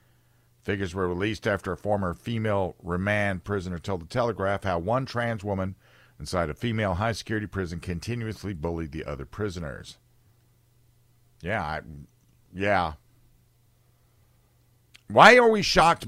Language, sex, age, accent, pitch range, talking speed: English, male, 50-69, American, 95-120 Hz, 125 wpm